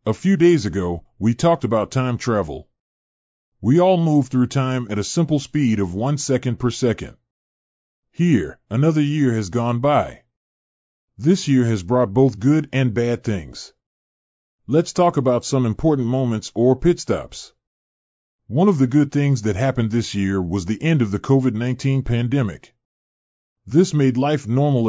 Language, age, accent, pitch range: Japanese, 40-59, American, 100-135 Hz